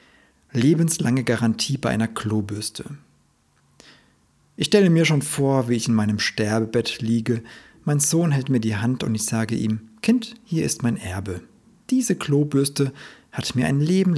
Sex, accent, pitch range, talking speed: male, German, 110-145 Hz, 155 wpm